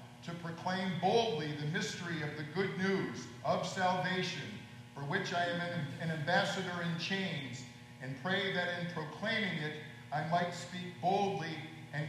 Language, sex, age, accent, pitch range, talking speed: English, male, 50-69, American, 145-175 Hz, 150 wpm